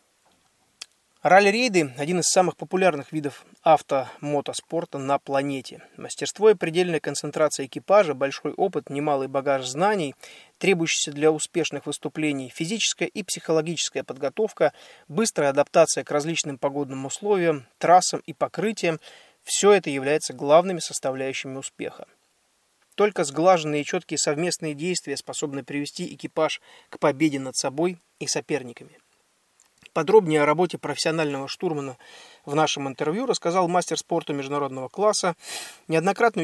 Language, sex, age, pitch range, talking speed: Russian, male, 20-39, 140-180 Hz, 120 wpm